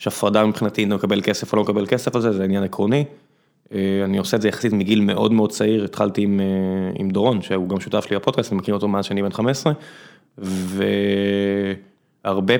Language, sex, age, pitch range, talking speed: Hebrew, male, 20-39, 100-120 Hz, 200 wpm